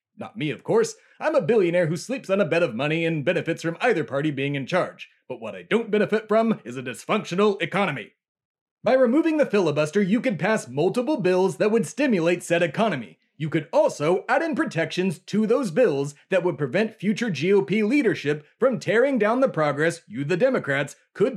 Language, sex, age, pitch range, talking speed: English, male, 30-49, 165-225 Hz, 195 wpm